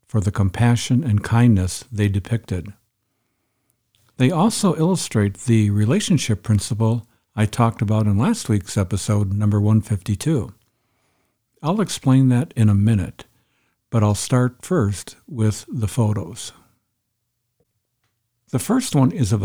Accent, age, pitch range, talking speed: American, 60-79, 105-125 Hz, 125 wpm